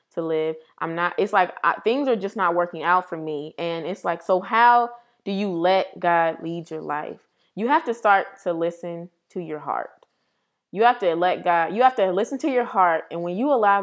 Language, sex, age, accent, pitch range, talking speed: English, female, 20-39, American, 180-240 Hz, 225 wpm